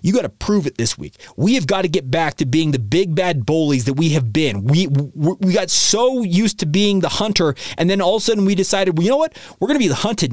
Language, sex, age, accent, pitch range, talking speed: English, male, 30-49, American, 140-195 Hz, 290 wpm